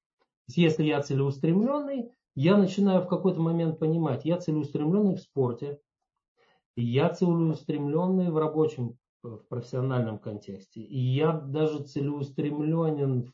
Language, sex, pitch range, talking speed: Russian, male, 130-160 Hz, 110 wpm